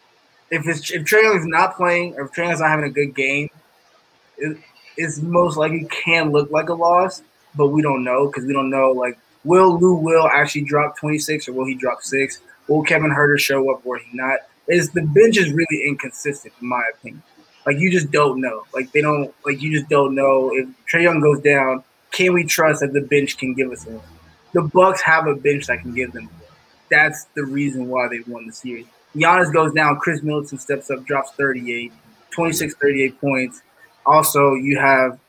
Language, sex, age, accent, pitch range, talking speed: English, male, 20-39, American, 135-160 Hz, 205 wpm